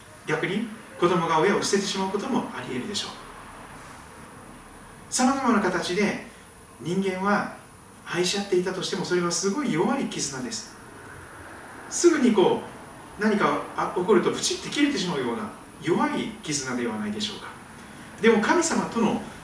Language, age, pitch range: Japanese, 40-59, 165-225 Hz